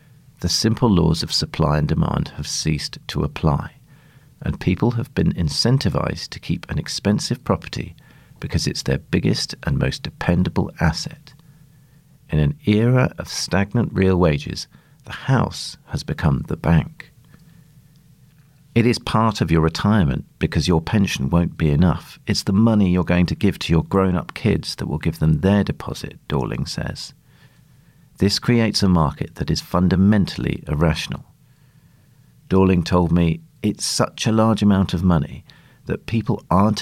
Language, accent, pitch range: English, British, 85-135 Hz